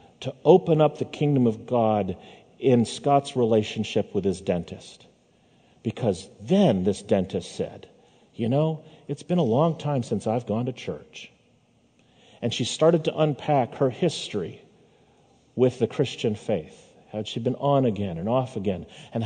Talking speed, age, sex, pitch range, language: 155 wpm, 50-69, male, 115-170 Hz, English